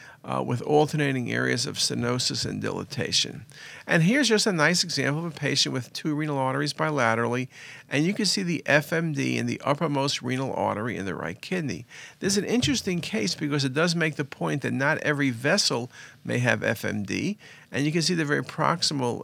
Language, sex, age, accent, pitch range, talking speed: English, male, 50-69, American, 125-155 Hz, 195 wpm